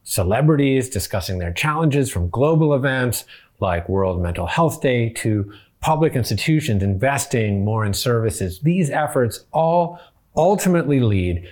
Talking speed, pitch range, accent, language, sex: 125 wpm, 100-145 Hz, American, English, male